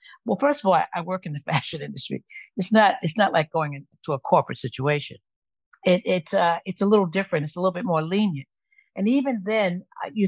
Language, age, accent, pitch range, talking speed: English, 60-79, American, 160-215 Hz, 210 wpm